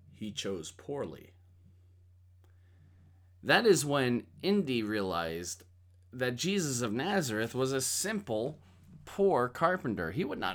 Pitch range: 90-140 Hz